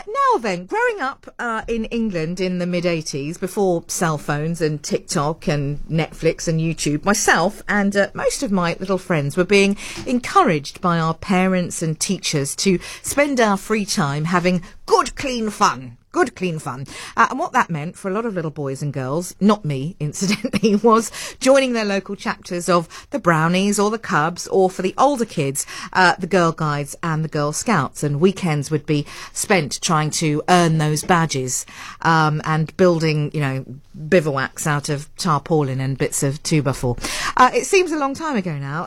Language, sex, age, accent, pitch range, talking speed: English, female, 50-69, British, 150-200 Hz, 185 wpm